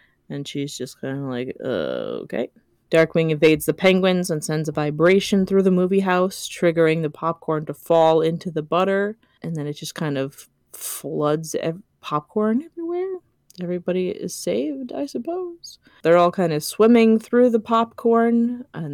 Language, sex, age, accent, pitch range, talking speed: English, female, 20-39, American, 150-190 Hz, 160 wpm